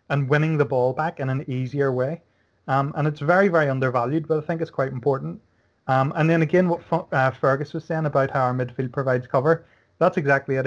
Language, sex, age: English, male, 30-49